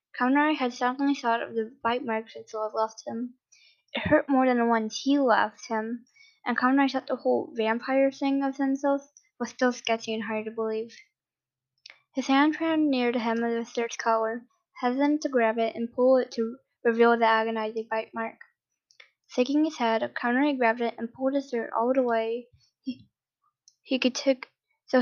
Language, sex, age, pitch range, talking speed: English, female, 10-29, 225-270 Hz, 190 wpm